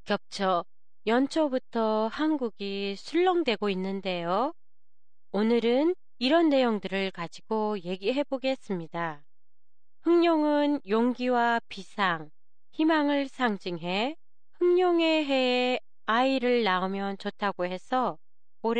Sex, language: female, Japanese